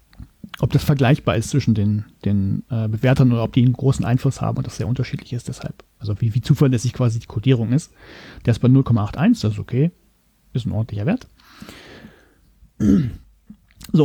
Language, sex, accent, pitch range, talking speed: German, male, German, 115-150 Hz, 180 wpm